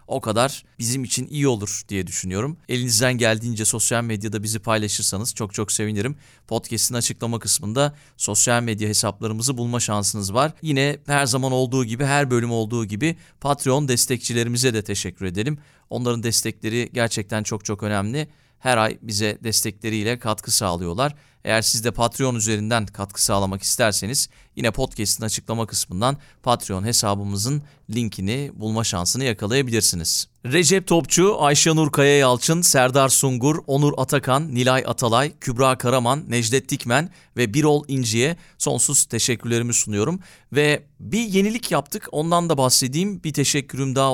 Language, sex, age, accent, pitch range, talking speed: Turkish, male, 40-59, native, 110-140 Hz, 135 wpm